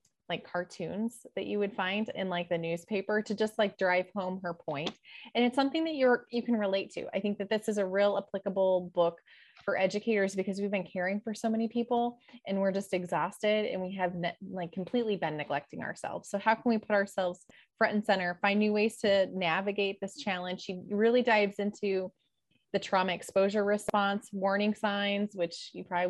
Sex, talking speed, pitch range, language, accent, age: female, 200 wpm, 180-215 Hz, English, American, 20-39